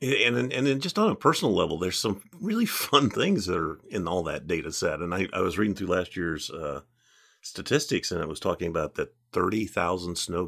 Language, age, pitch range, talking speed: English, 50-69, 90-120 Hz, 225 wpm